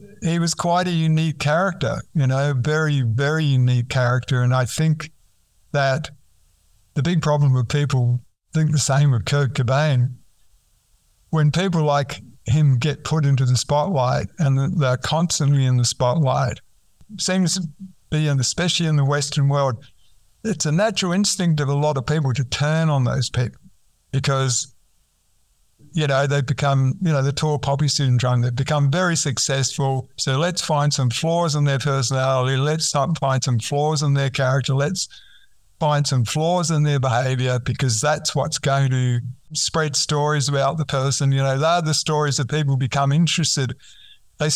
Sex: male